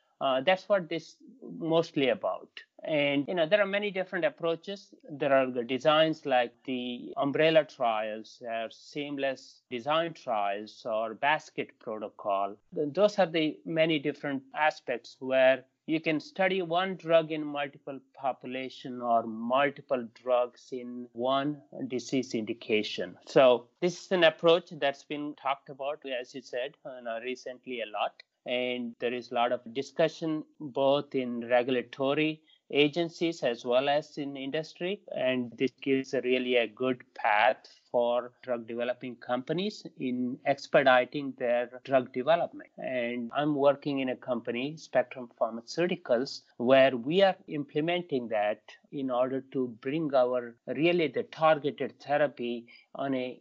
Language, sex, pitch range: English, male, 125-160 Hz